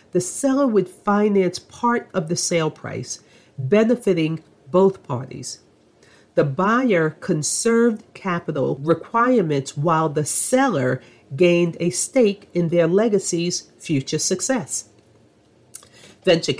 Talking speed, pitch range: 105 wpm, 155-210 Hz